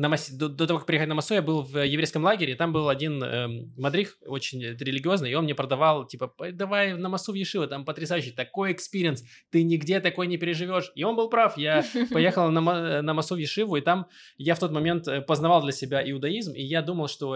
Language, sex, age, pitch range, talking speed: Russian, male, 20-39, 140-180 Hz, 215 wpm